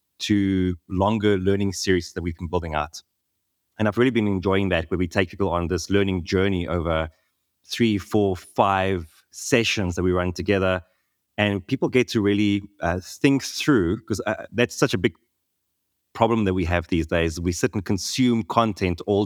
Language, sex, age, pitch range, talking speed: English, male, 20-39, 90-105 Hz, 180 wpm